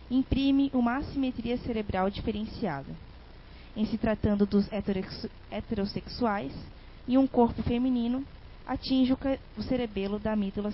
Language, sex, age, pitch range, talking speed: Portuguese, female, 20-39, 200-245 Hz, 105 wpm